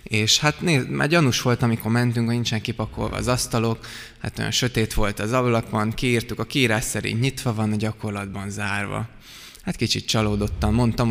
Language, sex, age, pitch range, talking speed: Hungarian, male, 20-39, 110-125 Hz, 175 wpm